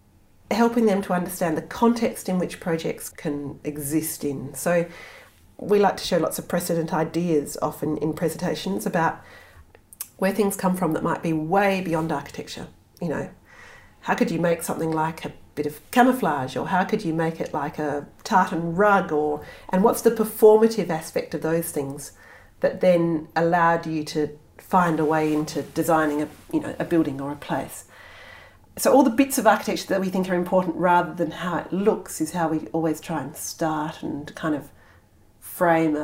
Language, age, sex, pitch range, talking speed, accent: English, 40-59, female, 155-185 Hz, 185 wpm, Australian